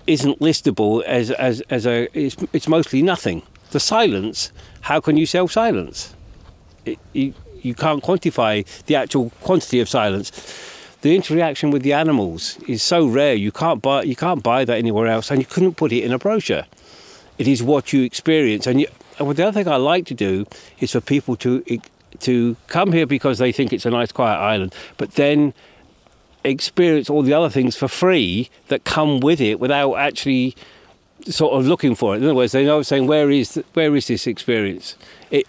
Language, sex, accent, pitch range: English, male, British, 120-150 Hz